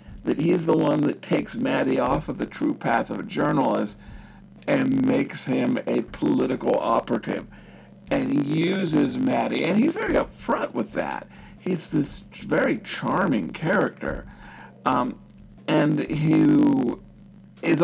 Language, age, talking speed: English, 50-69, 135 wpm